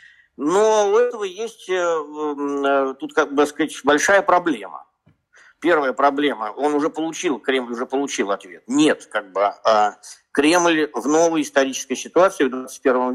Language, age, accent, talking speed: Russian, 50-69, native, 130 wpm